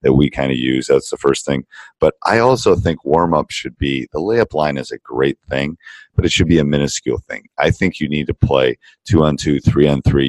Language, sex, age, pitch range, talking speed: English, male, 40-59, 65-85 Hz, 250 wpm